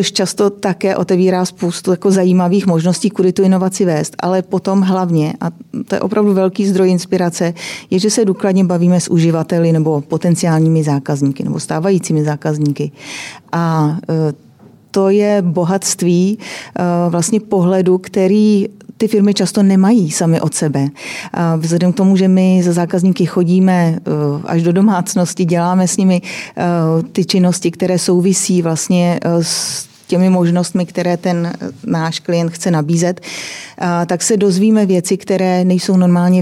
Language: Czech